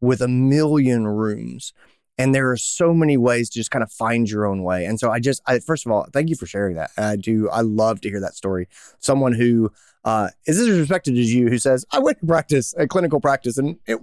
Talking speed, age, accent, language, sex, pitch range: 250 wpm, 30-49, American, English, male, 110-140 Hz